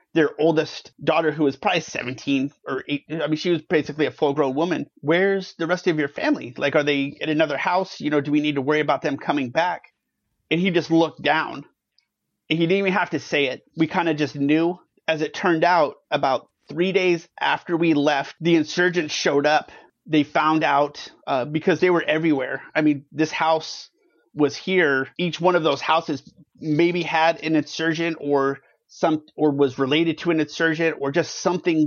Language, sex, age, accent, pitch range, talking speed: English, male, 30-49, American, 150-170 Hz, 200 wpm